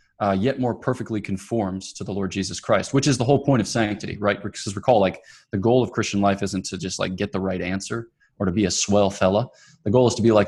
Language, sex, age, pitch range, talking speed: English, male, 20-39, 100-125 Hz, 265 wpm